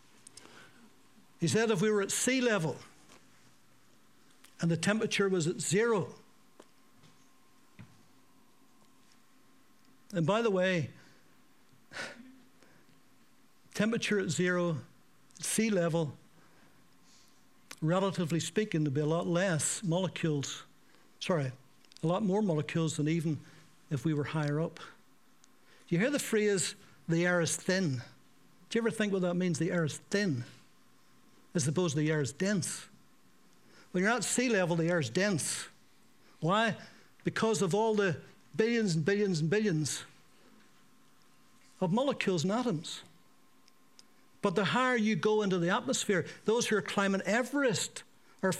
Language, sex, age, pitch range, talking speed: English, male, 60-79, 170-220 Hz, 130 wpm